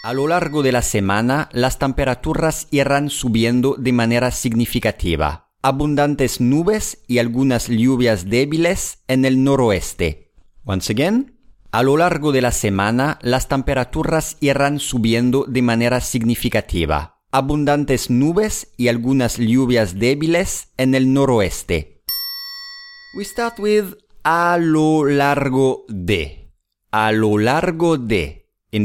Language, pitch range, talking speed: English, 105-150 Hz, 120 wpm